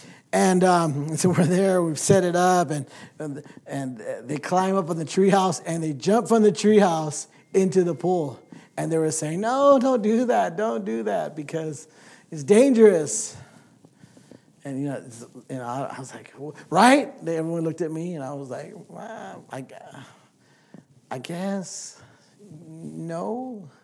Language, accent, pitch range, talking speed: English, American, 150-190 Hz, 165 wpm